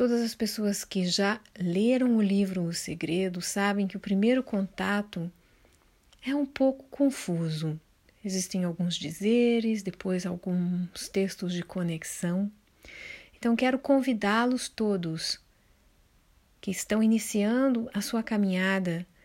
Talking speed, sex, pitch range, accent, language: 115 wpm, female, 175-220 Hz, Brazilian, Portuguese